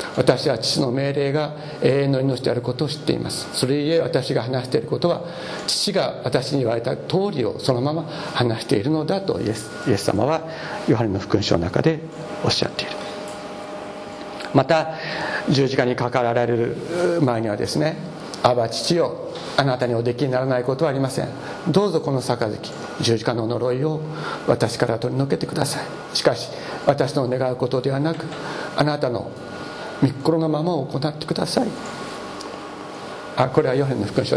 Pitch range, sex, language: 130-170 Hz, male, Japanese